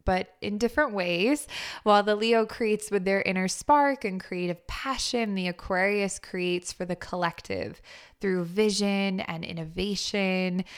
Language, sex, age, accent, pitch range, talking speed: English, female, 20-39, American, 175-210 Hz, 140 wpm